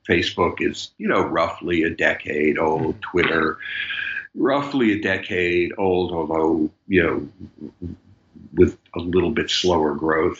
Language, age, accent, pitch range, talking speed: English, 50-69, American, 90-115 Hz, 125 wpm